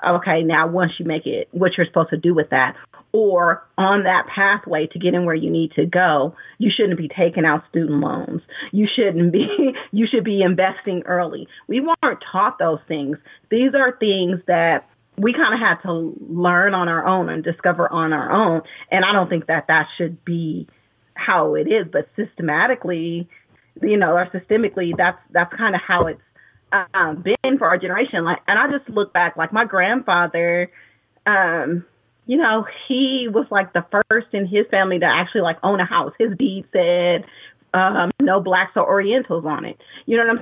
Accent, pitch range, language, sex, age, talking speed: American, 170-225 Hz, English, female, 30-49, 195 wpm